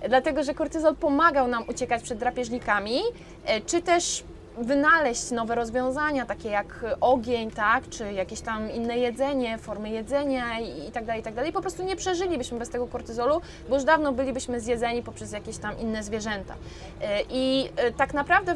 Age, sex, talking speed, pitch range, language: 20-39, female, 150 wpm, 230-290 Hz, Polish